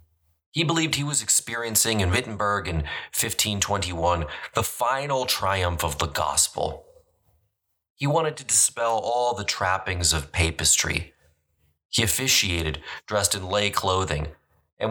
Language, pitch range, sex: English, 80-105 Hz, male